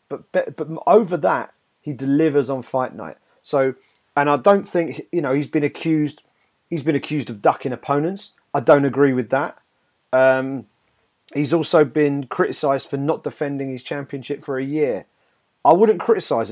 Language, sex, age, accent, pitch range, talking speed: English, male, 30-49, British, 125-150 Hz, 165 wpm